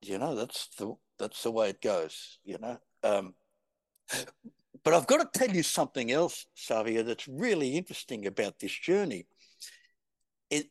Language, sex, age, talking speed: English, male, 60-79, 155 wpm